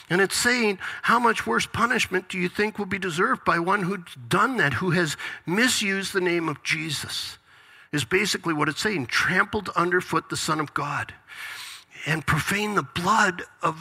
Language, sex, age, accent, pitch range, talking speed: English, male, 50-69, American, 185-235 Hz, 180 wpm